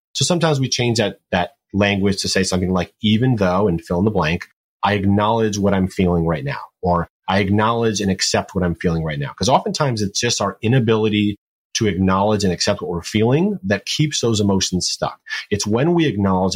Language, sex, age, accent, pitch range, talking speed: English, male, 30-49, American, 95-120 Hz, 205 wpm